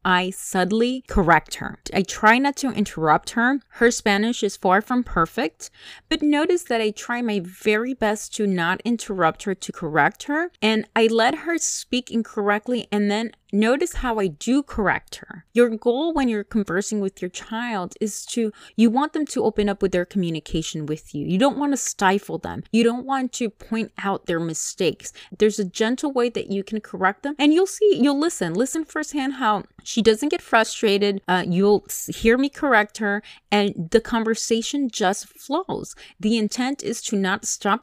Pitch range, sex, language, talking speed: 185-240 Hz, female, English, 185 wpm